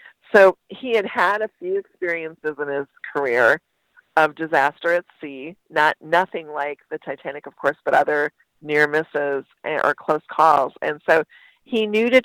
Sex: female